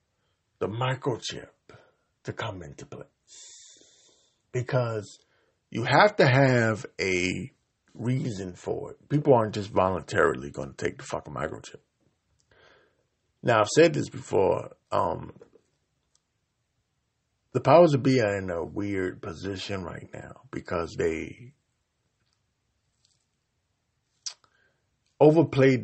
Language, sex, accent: English, male, American